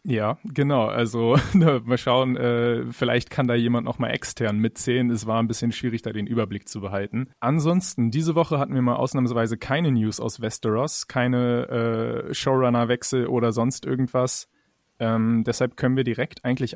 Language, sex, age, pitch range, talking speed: German, male, 30-49, 110-125 Hz, 165 wpm